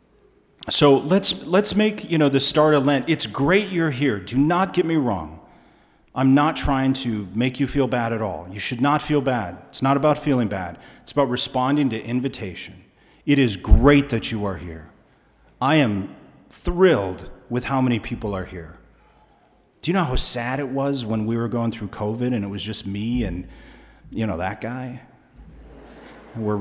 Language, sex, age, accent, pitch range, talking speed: English, male, 40-59, American, 100-130 Hz, 190 wpm